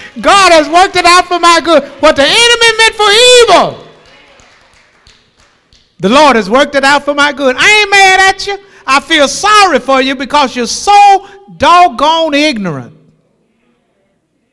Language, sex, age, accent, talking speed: English, male, 60-79, American, 155 wpm